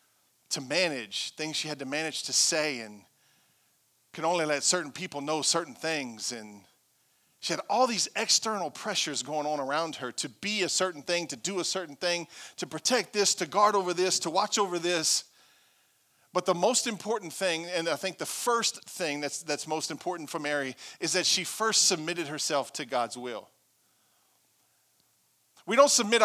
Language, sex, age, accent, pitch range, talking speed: English, male, 40-59, American, 155-235 Hz, 180 wpm